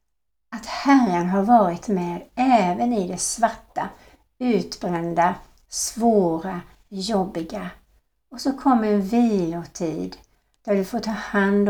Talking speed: 115 wpm